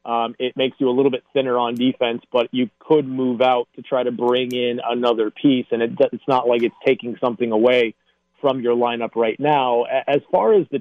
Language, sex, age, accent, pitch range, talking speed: English, male, 30-49, American, 120-145 Hz, 215 wpm